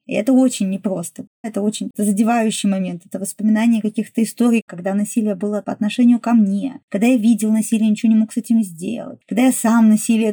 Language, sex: Russian, female